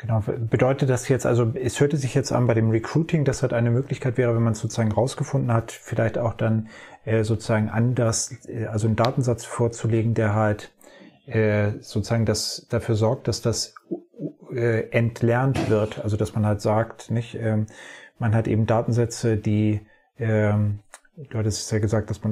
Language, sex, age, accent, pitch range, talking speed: German, male, 30-49, German, 110-120 Hz, 175 wpm